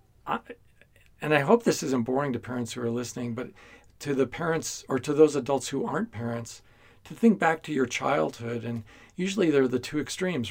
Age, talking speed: 40-59, 195 wpm